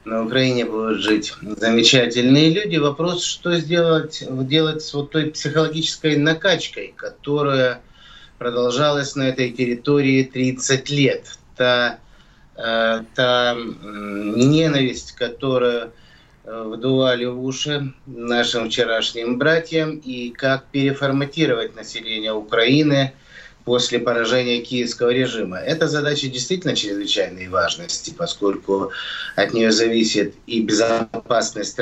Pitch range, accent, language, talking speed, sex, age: 115-150 Hz, native, Russian, 100 wpm, male, 30-49